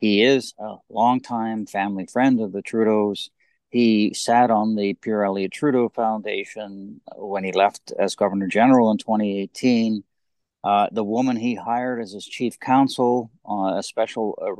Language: English